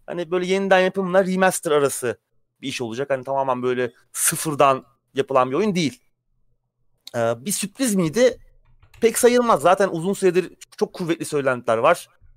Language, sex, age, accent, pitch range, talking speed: Turkish, male, 30-49, native, 125-180 Hz, 145 wpm